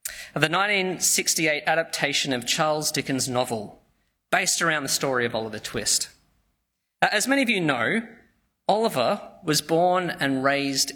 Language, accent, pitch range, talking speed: English, Australian, 140-200 Hz, 135 wpm